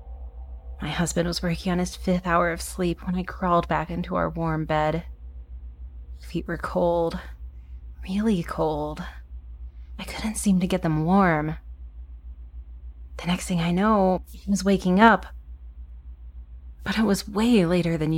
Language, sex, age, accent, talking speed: English, female, 30-49, American, 150 wpm